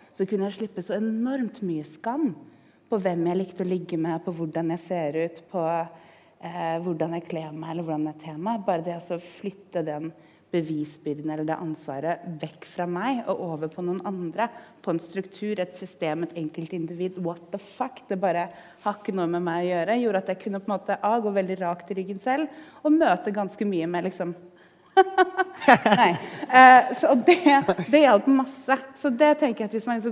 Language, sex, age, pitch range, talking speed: English, female, 30-49, 170-220 Hz, 190 wpm